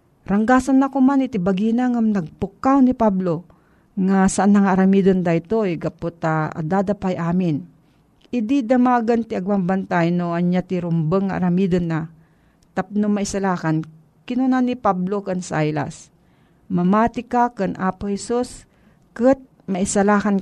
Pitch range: 175-220 Hz